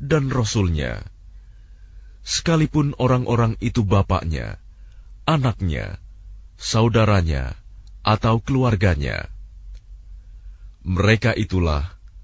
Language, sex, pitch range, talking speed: English, male, 90-115 Hz, 60 wpm